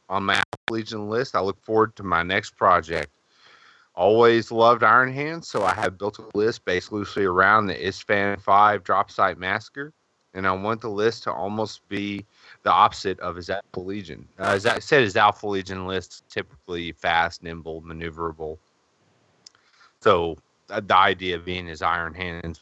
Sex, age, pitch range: male, 30-49, 90-115 Hz